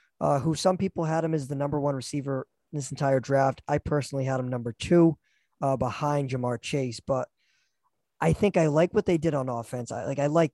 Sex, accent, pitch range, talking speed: male, American, 135-160 Hz, 220 wpm